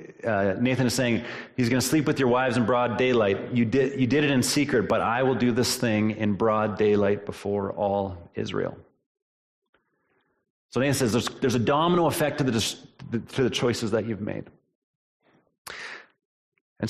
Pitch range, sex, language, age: 105-125 Hz, male, English, 30-49